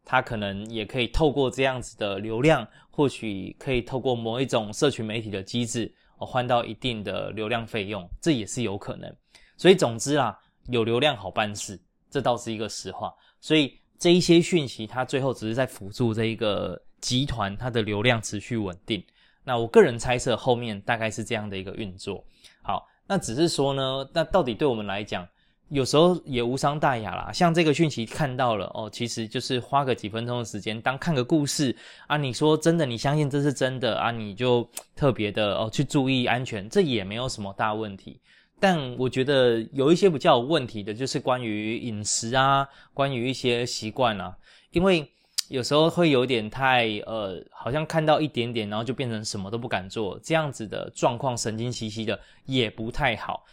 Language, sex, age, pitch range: Chinese, male, 20-39, 110-140 Hz